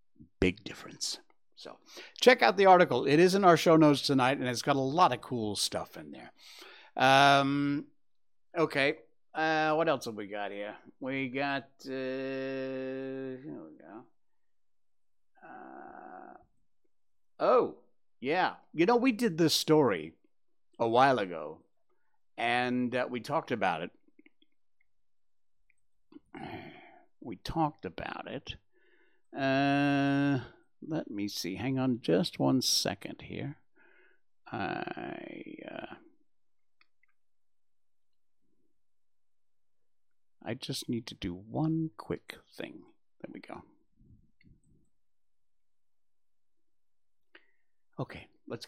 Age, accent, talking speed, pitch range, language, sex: 60-79, American, 100 wpm, 125-205 Hz, English, male